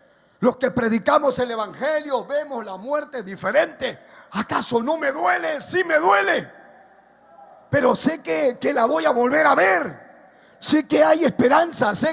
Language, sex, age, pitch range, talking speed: Spanish, male, 50-69, 255-345 Hz, 155 wpm